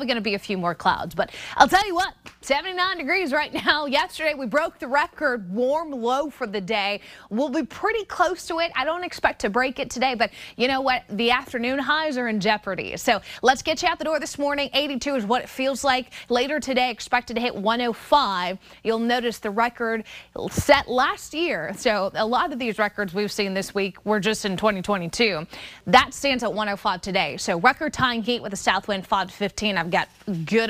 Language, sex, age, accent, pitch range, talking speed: English, female, 20-39, American, 205-265 Hz, 215 wpm